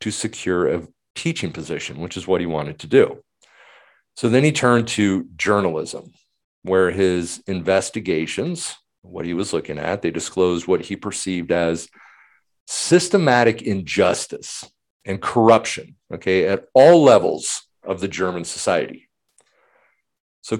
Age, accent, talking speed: 40-59, American, 130 wpm